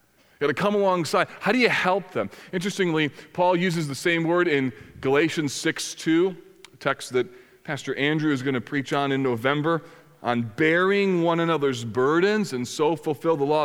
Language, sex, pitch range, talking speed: English, male, 150-195 Hz, 180 wpm